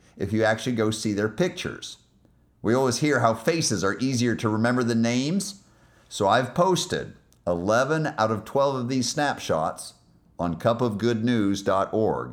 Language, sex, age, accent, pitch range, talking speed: English, male, 50-69, American, 95-120 Hz, 145 wpm